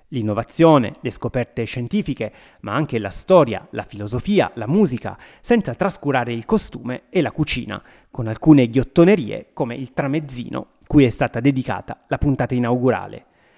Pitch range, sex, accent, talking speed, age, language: 115-145 Hz, male, native, 140 wpm, 30-49, Italian